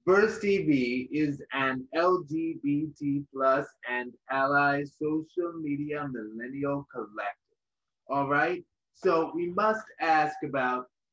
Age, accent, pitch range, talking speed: 30-49, American, 135-175 Hz, 100 wpm